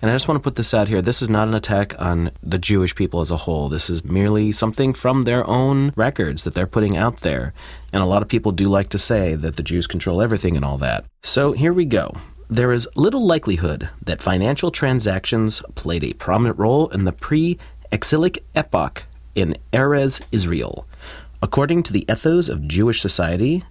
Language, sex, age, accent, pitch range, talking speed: English, male, 30-49, American, 90-125 Hz, 205 wpm